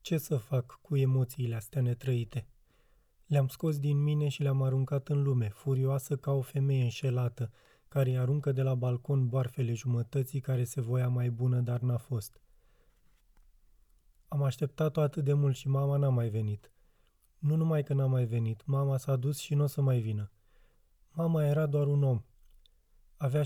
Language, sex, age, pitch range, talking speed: Romanian, male, 20-39, 125-145 Hz, 175 wpm